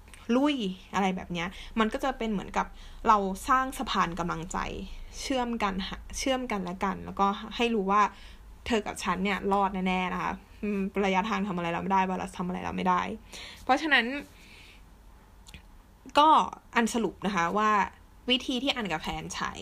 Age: 20-39